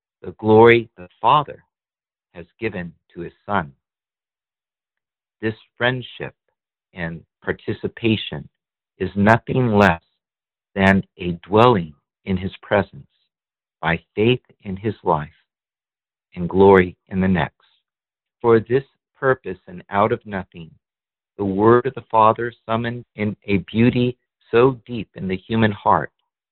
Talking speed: 120 wpm